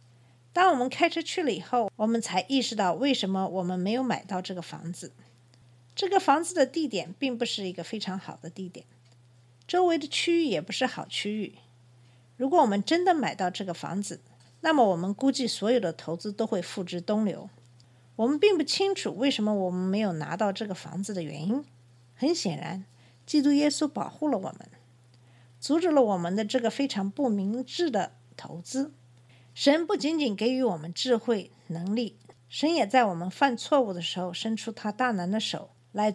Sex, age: female, 50-69